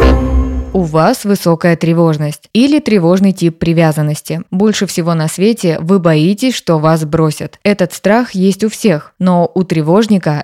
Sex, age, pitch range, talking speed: female, 20-39, 165-205 Hz, 145 wpm